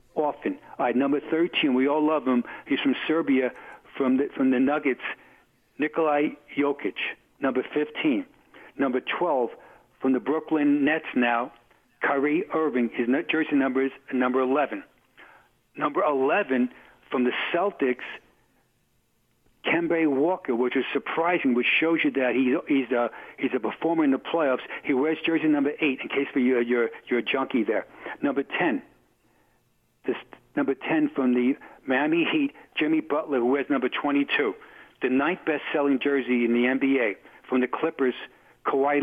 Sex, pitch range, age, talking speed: male, 130-155 Hz, 60-79, 150 wpm